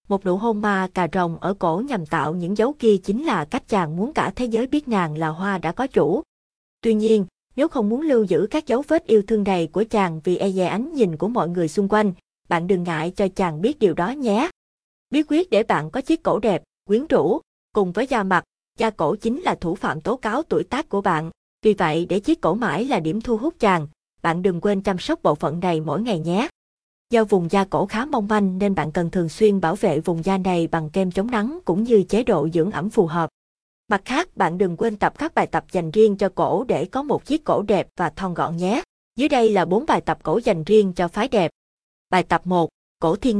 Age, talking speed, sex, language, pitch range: 20-39, 250 wpm, female, Vietnamese, 175-225 Hz